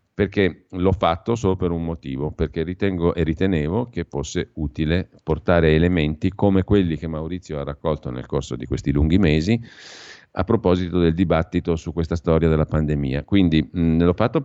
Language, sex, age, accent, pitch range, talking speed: Italian, male, 50-69, native, 75-95 Hz, 165 wpm